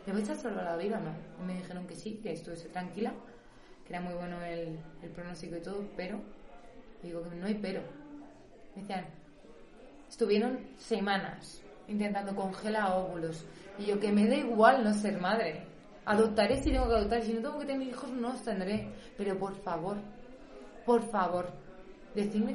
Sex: female